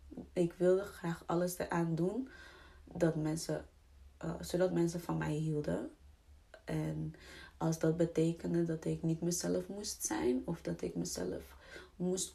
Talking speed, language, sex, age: 140 wpm, Dutch, female, 20-39